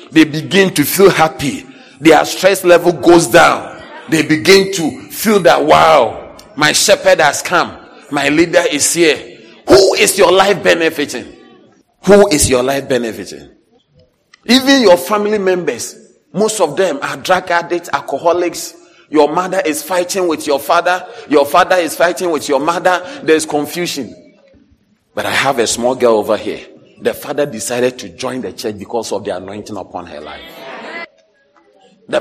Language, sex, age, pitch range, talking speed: English, male, 40-59, 145-190 Hz, 160 wpm